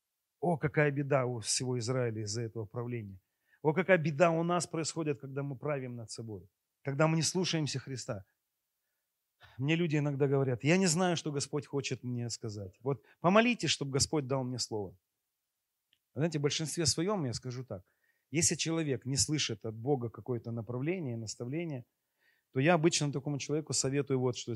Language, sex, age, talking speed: Russian, male, 30-49, 165 wpm